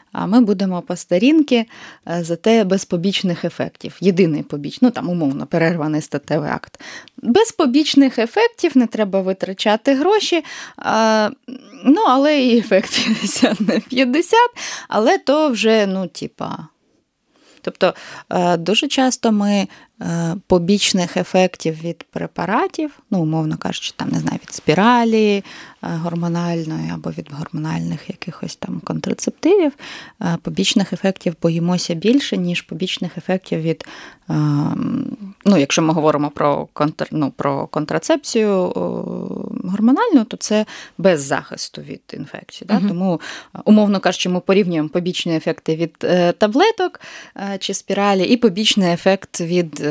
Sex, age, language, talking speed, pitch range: female, 20-39, Ukrainian, 120 wpm, 170-245 Hz